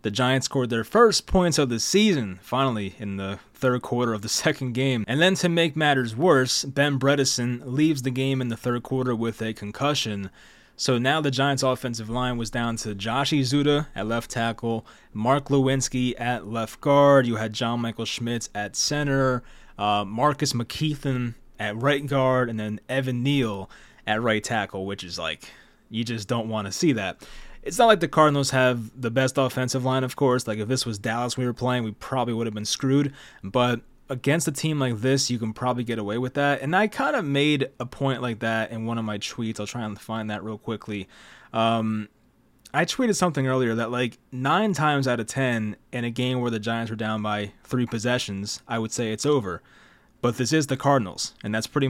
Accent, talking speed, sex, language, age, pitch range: American, 210 wpm, male, English, 20-39, 115-140 Hz